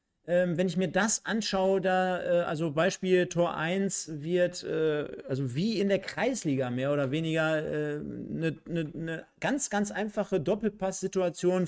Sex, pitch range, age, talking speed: male, 160-185 Hz, 40-59, 155 wpm